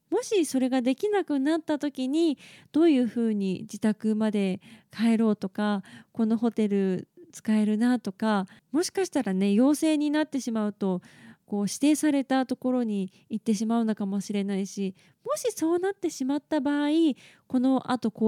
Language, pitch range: Japanese, 210-280 Hz